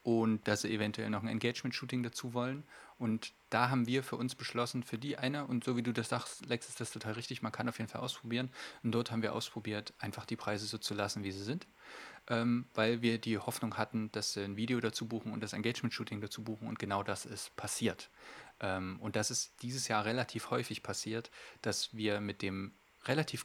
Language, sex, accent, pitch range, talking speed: German, male, German, 105-120 Hz, 220 wpm